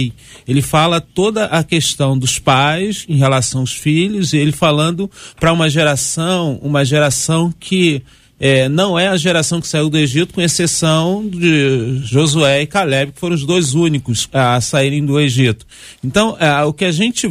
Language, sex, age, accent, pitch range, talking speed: Portuguese, male, 40-59, Brazilian, 135-175 Hz, 170 wpm